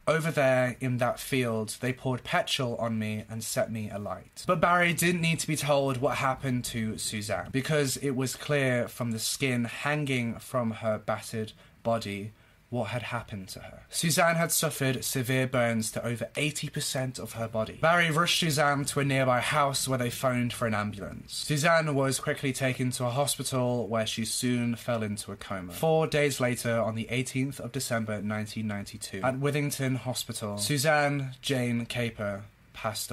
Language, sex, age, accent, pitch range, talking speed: English, male, 20-39, British, 115-145 Hz, 175 wpm